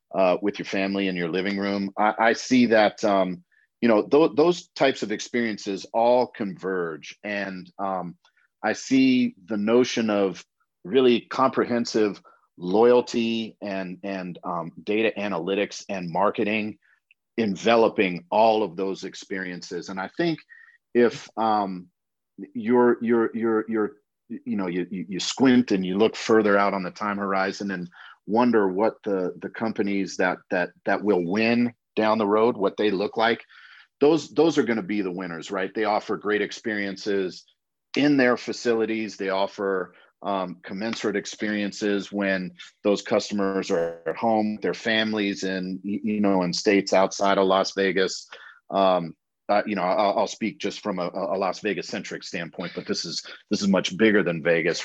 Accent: American